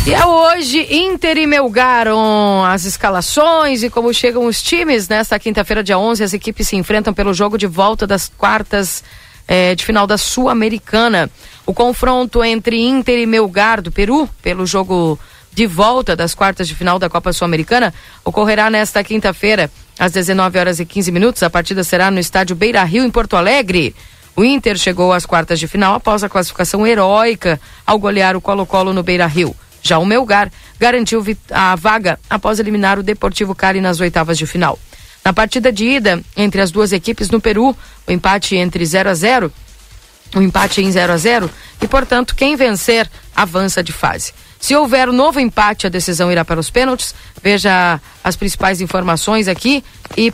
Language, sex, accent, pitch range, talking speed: Portuguese, female, Brazilian, 180-230 Hz, 180 wpm